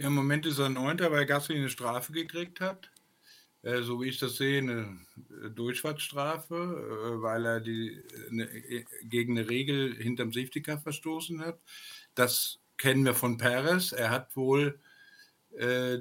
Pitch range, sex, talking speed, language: 125-165 Hz, male, 155 wpm, German